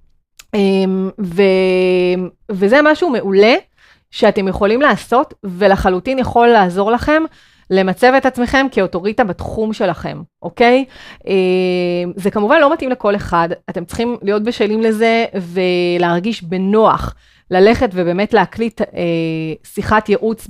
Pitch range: 185-235 Hz